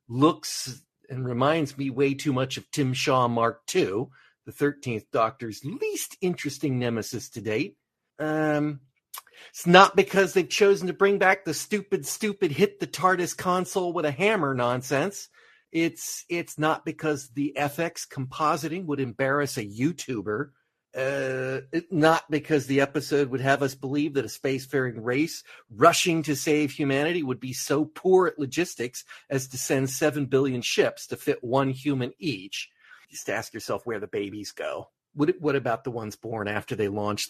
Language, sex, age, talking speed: English, male, 40-59, 165 wpm